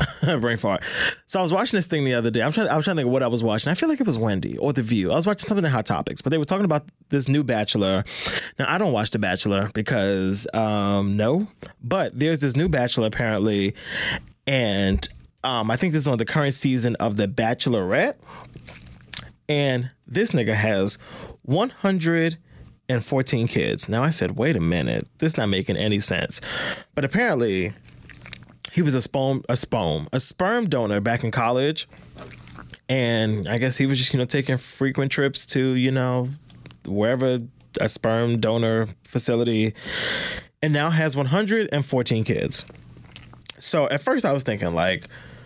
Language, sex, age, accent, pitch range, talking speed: English, male, 20-39, American, 110-150 Hz, 185 wpm